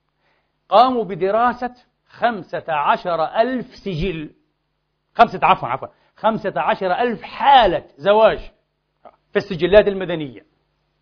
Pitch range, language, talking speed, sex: 160-215 Hz, Arabic, 70 wpm, male